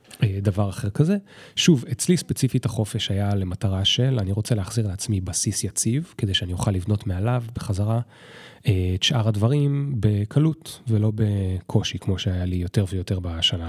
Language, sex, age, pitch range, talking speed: Hebrew, male, 30-49, 95-115 Hz, 150 wpm